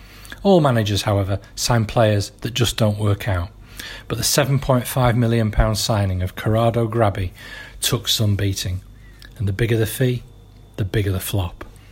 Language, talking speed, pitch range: English, 150 wpm, 105-130 Hz